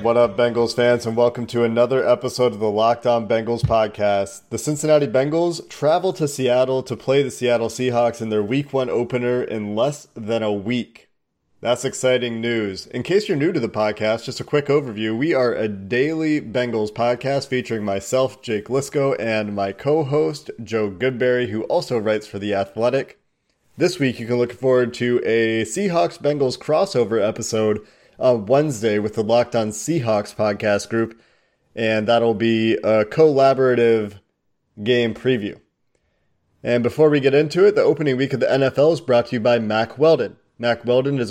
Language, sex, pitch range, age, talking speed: English, male, 110-135 Hz, 30-49, 175 wpm